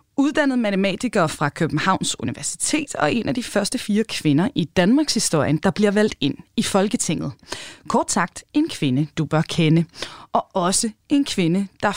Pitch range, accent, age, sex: 170-255 Hz, native, 20-39, female